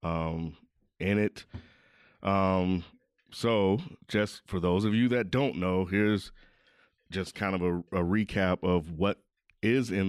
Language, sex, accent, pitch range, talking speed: English, male, American, 95-115 Hz, 145 wpm